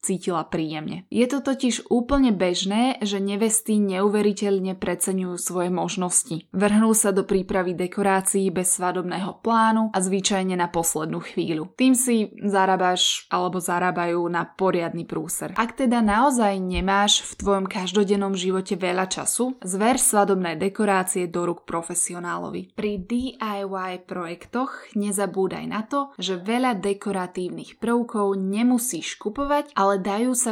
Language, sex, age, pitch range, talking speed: Slovak, female, 20-39, 180-220 Hz, 130 wpm